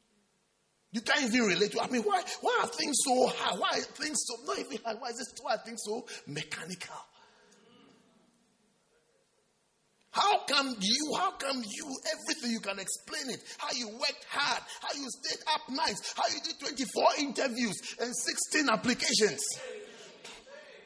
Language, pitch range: English, 225-260 Hz